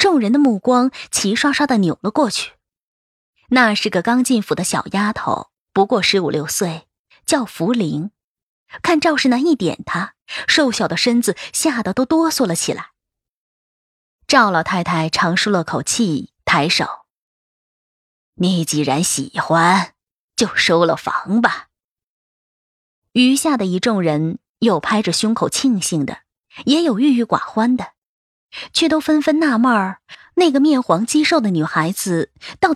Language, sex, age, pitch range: Chinese, female, 20-39, 175-270 Hz